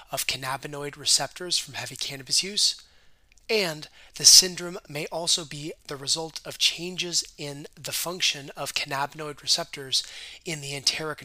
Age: 30-49